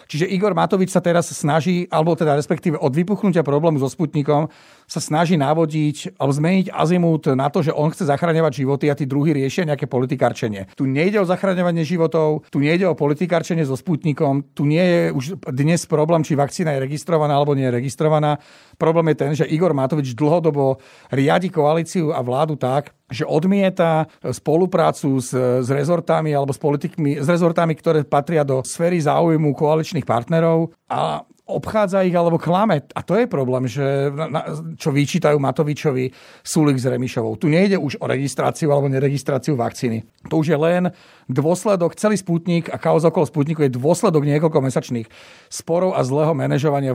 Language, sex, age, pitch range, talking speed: Slovak, male, 40-59, 140-170 Hz, 165 wpm